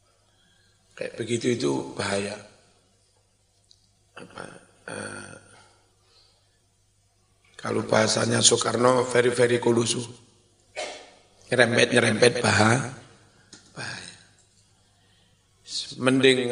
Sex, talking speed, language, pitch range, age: male, 60 wpm, Indonesian, 105-125 Hz, 50-69